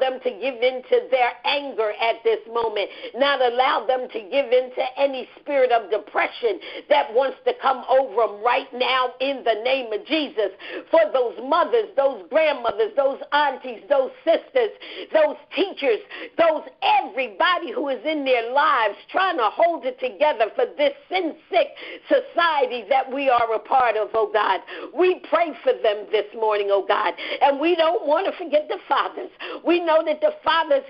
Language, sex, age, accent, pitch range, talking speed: English, female, 50-69, American, 260-365 Hz, 175 wpm